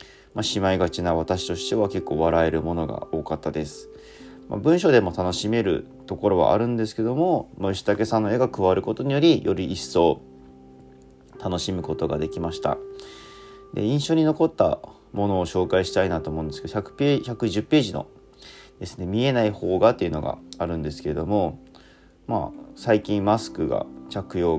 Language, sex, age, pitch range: Japanese, male, 30-49, 80-110 Hz